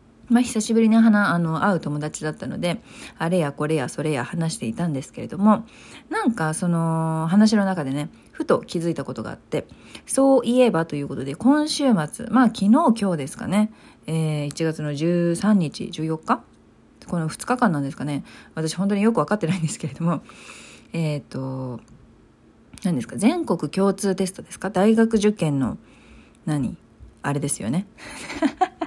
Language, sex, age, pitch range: Japanese, female, 40-59, 155-230 Hz